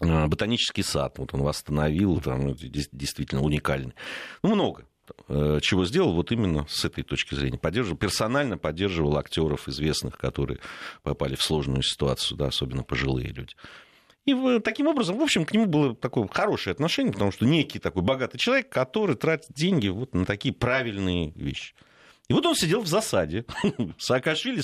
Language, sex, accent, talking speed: Russian, male, native, 145 wpm